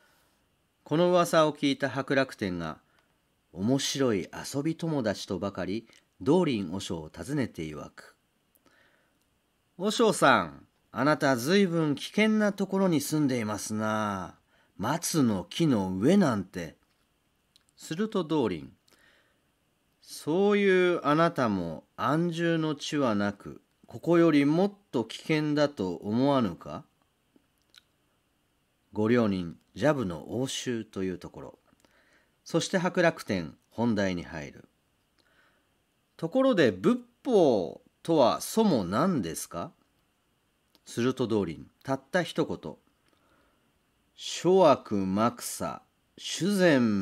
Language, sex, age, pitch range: Japanese, male, 40-59, 100-165 Hz